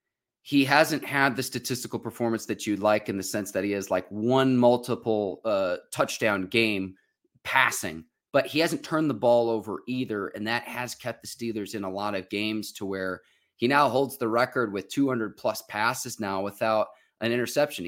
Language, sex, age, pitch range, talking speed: English, male, 30-49, 110-135 Hz, 185 wpm